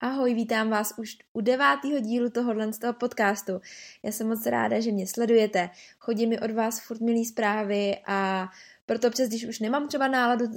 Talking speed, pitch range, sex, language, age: 180 wpm, 205-235 Hz, female, Czech, 20-39